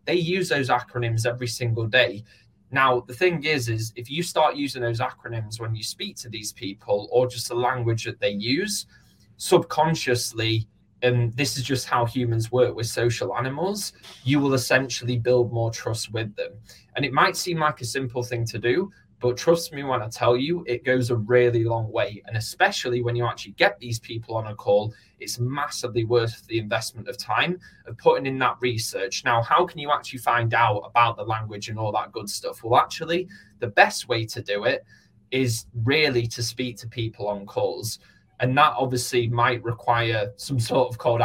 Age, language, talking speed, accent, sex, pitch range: 20-39, English, 200 wpm, British, male, 115-130 Hz